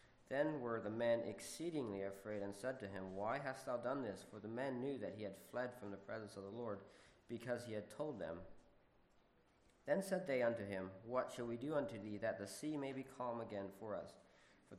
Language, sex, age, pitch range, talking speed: English, male, 40-59, 105-135 Hz, 225 wpm